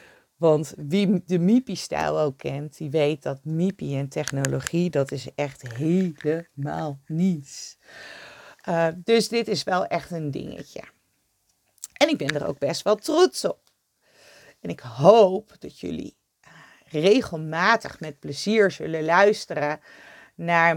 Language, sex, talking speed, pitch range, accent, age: Dutch, female, 130 wpm, 155-205 Hz, Dutch, 40-59